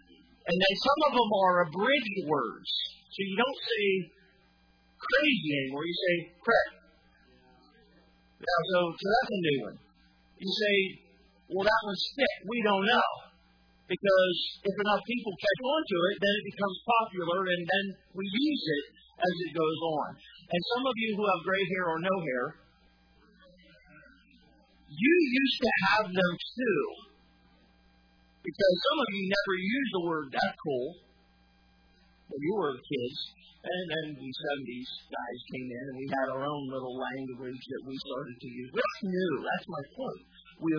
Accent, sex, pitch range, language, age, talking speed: American, male, 145-205 Hz, English, 40-59, 165 wpm